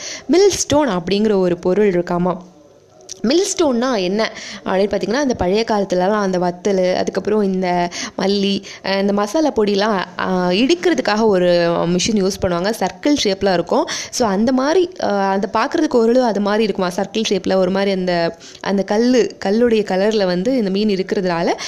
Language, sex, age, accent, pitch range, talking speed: Tamil, female, 20-39, native, 190-240 Hz, 140 wpm